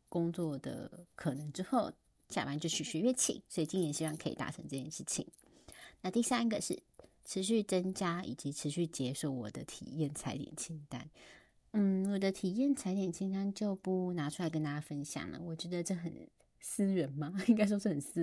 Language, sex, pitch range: Chinese, female, 155-210 Hz